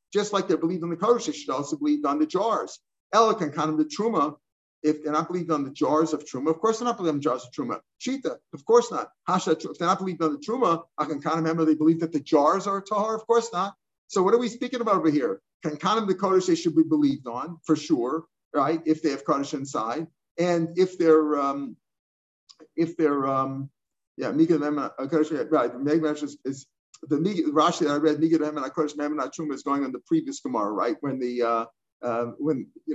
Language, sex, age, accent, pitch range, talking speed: English, male, 50-69, American, 155-195 Hz, 230 wpm